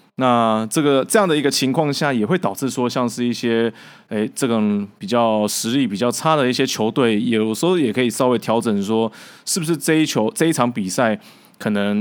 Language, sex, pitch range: Chinese, male, 105-130 Hz